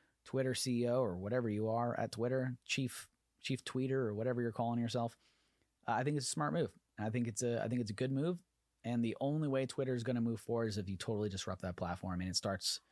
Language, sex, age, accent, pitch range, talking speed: English, male, 30-49, American, 95-125 Hz, 235 wpm